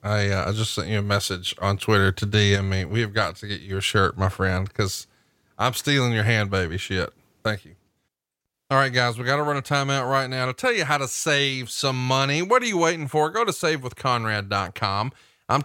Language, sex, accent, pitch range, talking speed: English, male, American, 110-160 Hz, 230 wpm